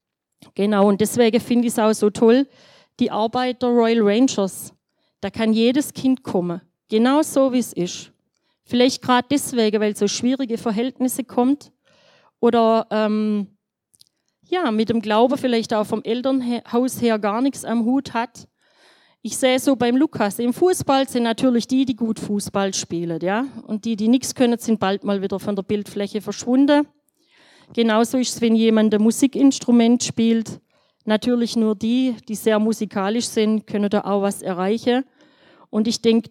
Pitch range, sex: 205-245 Hz, female